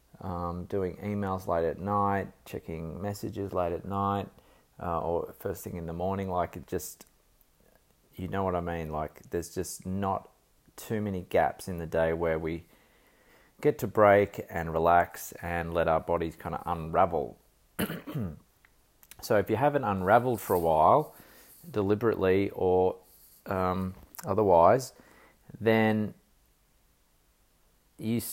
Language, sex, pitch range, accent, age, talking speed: English, male, 80-100 Hz, Australian, 30-49, 140 wpm